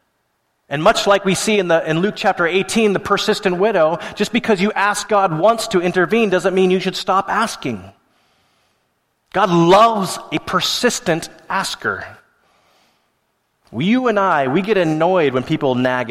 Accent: American